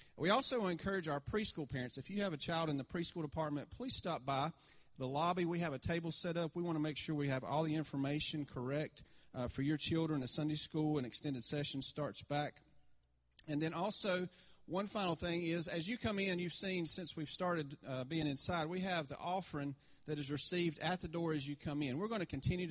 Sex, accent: male, American